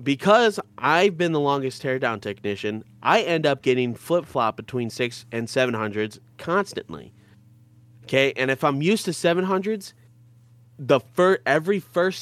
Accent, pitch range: American, 100-140 Hz